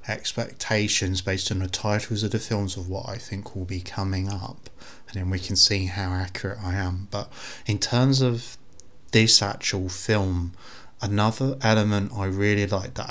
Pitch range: 95-115 Hz